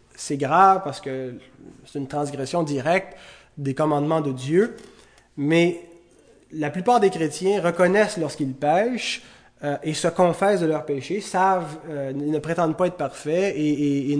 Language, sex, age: French, male, 30-49